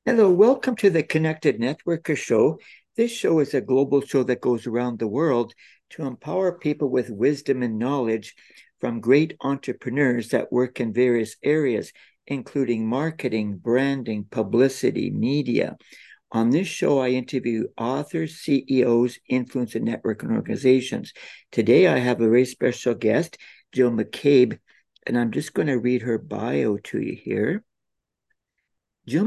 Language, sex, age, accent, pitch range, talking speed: English, male, 60-79, American, 120-145 Hz, 145 wpm